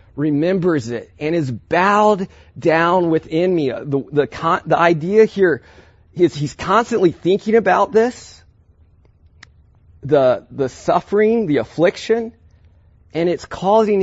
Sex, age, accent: male, 30-49, American